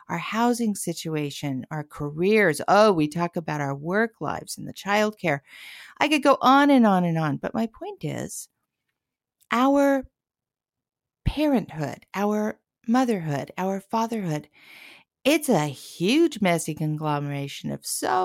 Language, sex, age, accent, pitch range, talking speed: English, female, 50-69, American, 160-255 Hz, 130 wpm